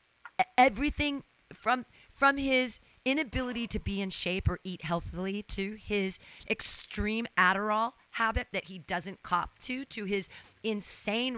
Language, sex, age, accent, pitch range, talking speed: English, female, 40-59, American, 190-255 Hz, 130 wpm